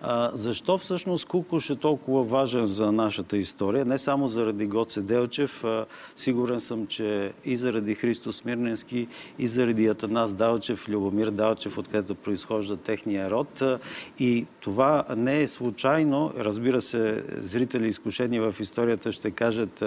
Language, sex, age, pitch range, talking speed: Bulgarian, male, 50-69, 110-135 Hz, 135 wpm